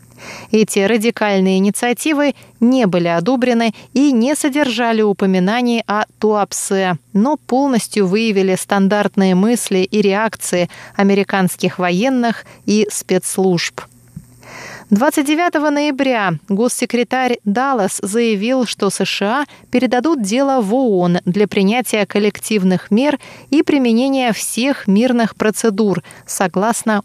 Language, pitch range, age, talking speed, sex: Russian, 190-240 Hz, 20-39, 100 wpm, female